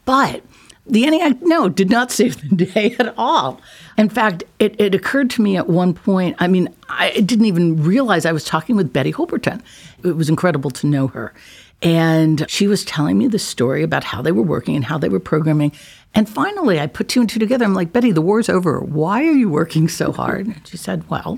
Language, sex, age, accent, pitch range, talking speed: English, female, 60-79, American, 155-215 Hz, 225 wpm